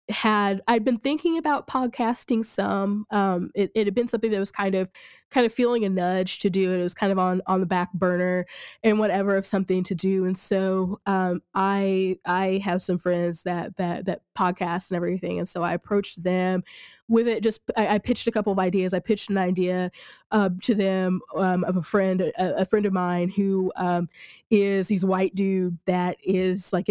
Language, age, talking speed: English, 20-39, 210 wpm